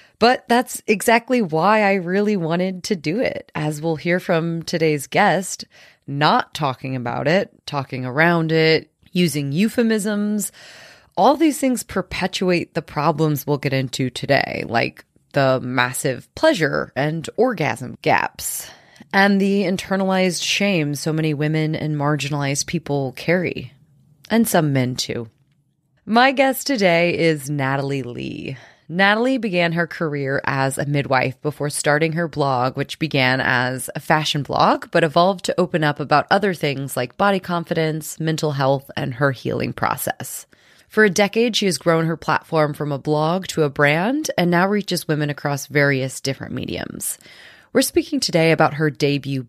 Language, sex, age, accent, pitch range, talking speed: English, female, 20-39, American, 140-190 Hz, 150 wpm